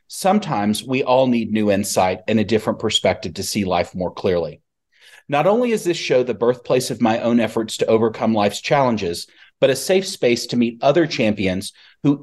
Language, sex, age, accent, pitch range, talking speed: English, male, 40-59, American, 105-140 Hz, 190 wpm